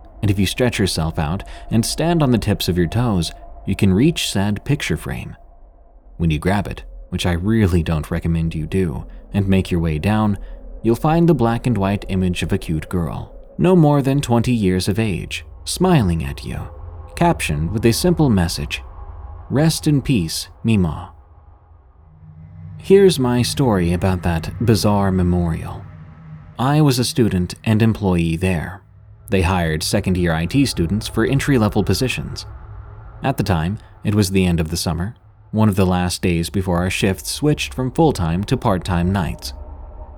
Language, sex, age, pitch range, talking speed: English, male, 30-49, 85-115 Hz, 165 wpm